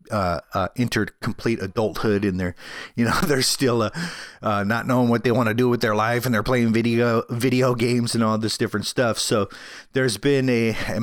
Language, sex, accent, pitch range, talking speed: English, male, American, 105-125 Hz, 210 wpm